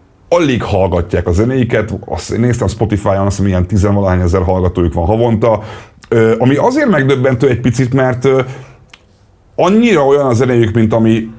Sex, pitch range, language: male, 95-120 Hz, Hungarian